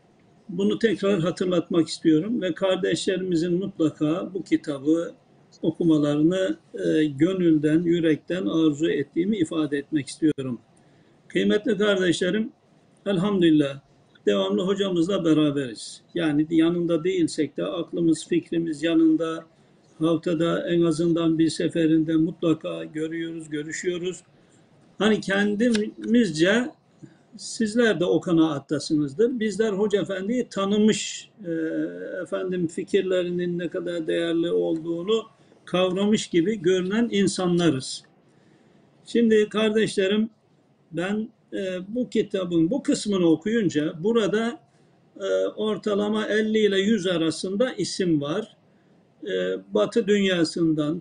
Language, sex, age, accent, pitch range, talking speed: Turkish, male, 60-79, native, 160-200 Hz, 90 wpm